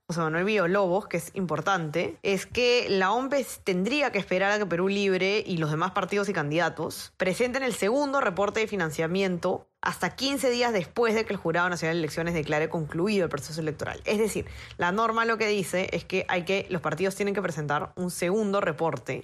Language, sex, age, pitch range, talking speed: Spanish, female, 20-39, 155-195 Hz, 205 wpm